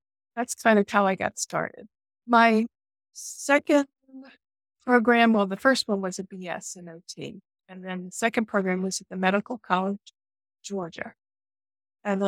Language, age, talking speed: English, 50-69, 150 wpm